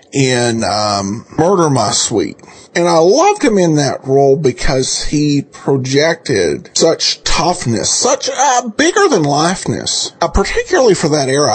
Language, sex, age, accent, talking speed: English, male, 40-59, American, 140 wpm